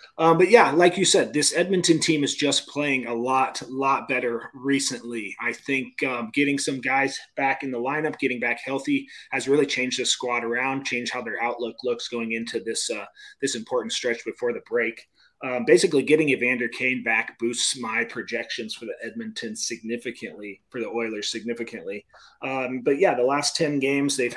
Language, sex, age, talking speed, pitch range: English, male, 30-49, 185 wpm, 120-150 Hz